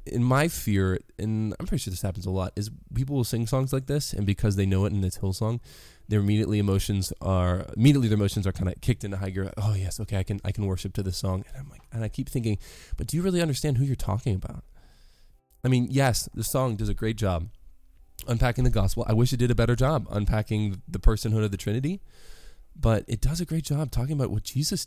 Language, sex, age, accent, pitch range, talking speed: English, male, 20-39, American, 95-125 Hz, 250 wpm